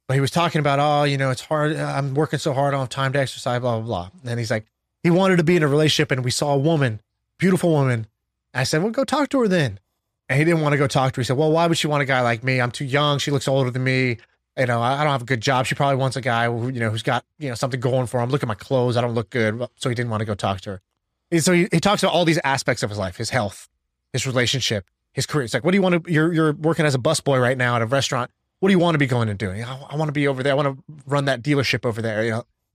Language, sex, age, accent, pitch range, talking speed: English, male, 20-39, American, 125-160 Hz, 330 wpm